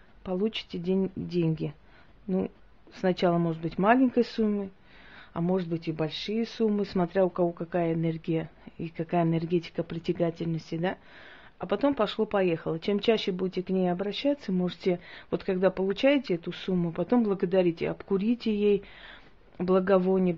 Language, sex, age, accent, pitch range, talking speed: Russian, female, 30-49, native, 170-200 Hz, 135 wpm